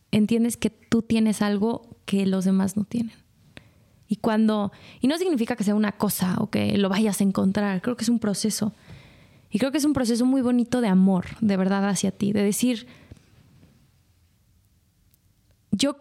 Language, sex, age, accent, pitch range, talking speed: Spanish, female, 20-39, Mexican, 205-255 Hz, 175 wpm